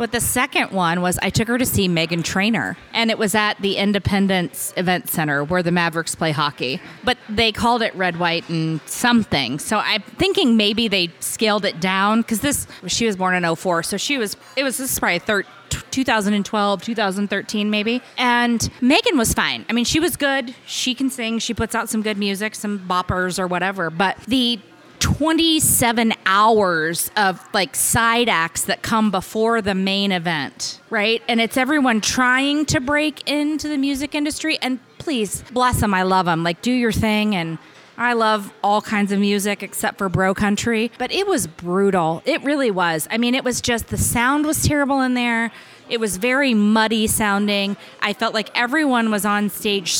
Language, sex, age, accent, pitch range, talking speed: English, female, 20-39, American, 190-240 Hz, 190 wpm